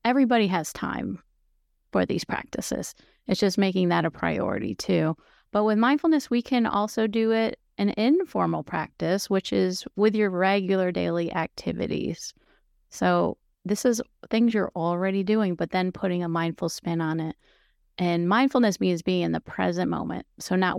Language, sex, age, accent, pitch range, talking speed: English, female, 30-49, American, 165-200 Hz, 160 wpm